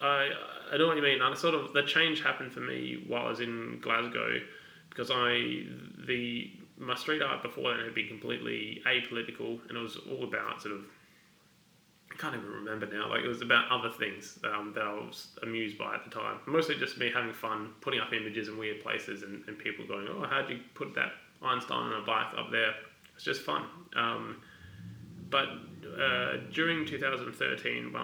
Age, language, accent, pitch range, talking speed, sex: 20-39, English, Australian, 110-145 Hz, 200 wpm, male